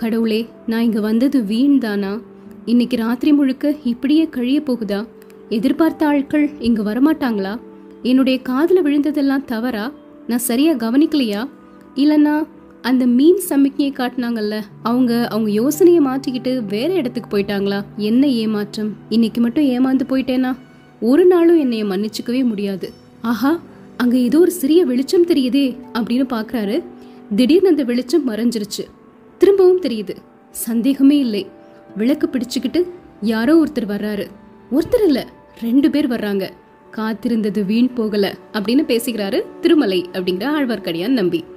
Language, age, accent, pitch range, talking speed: Tamil, 20-39, native, 215-295 Hz, 90 wpm